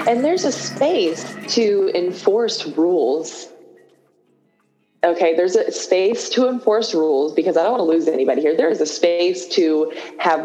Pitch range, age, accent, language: 150-215 Hz, 20-39, American, English